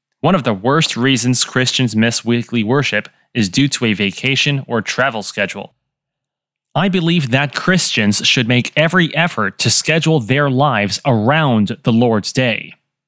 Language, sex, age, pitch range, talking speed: English, male, 30-49, 115-150 Hz, 150 wpm